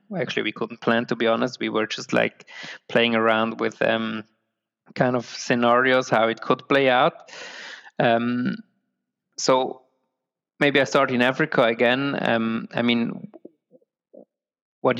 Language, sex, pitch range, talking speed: English, male, 115-125 Hz, 140 wpm